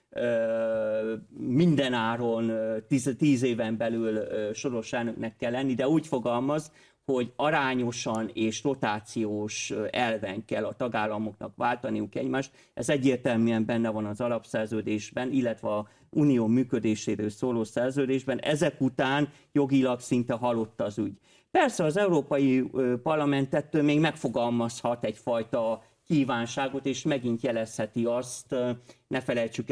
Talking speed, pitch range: 110 wpm, 110-135 Hz